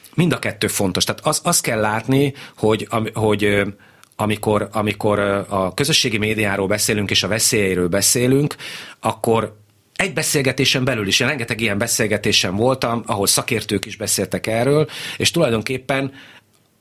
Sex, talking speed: male, 140 wpm